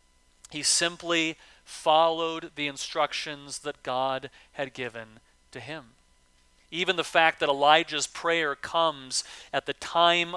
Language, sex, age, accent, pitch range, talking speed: English, male, 40-59, American, 150-195 Hz, 120 wpm